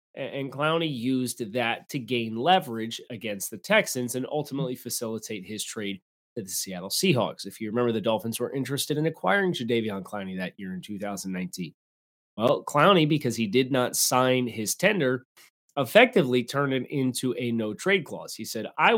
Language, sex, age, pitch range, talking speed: English, male, 30-49, 105-150 Hz, 170 wpm